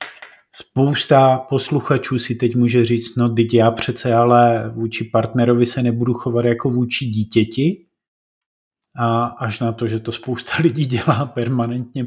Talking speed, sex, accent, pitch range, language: 145 wpm, male, native, 115-140 Hz, Czech